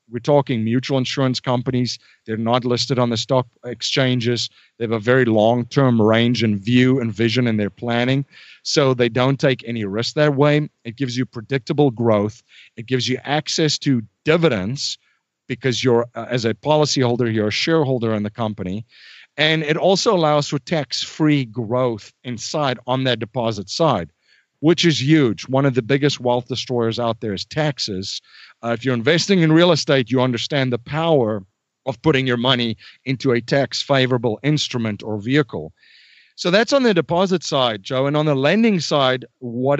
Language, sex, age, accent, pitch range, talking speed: English, male, 50-69, American, 115-150 Hz, 175 wpm